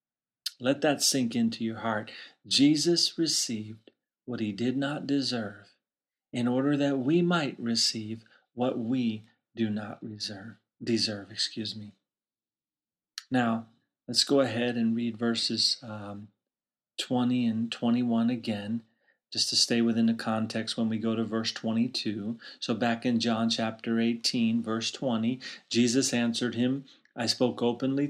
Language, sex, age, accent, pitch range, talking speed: English, male, 40-59, American, 115-140 Hz, 140 wpm